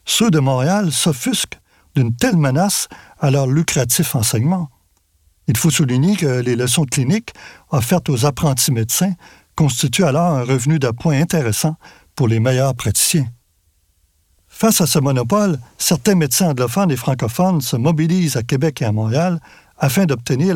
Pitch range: 120-170 Hz